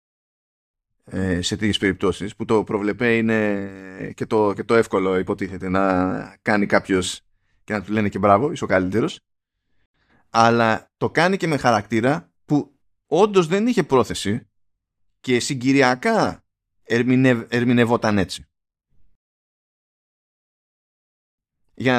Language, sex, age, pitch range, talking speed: Greek, male, 20-39, 100-145 Hz, 115 wpm